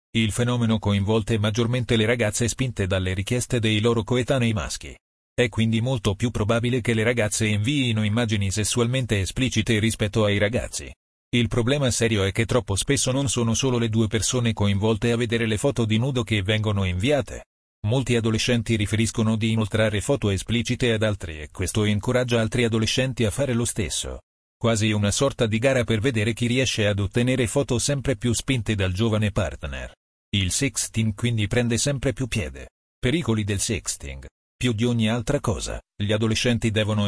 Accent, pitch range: native, 105-120 Hz